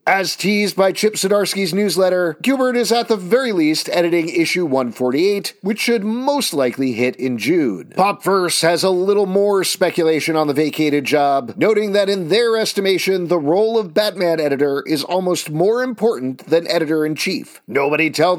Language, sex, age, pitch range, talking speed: English, male, 40-59, 165-225 Hz, 165 wpm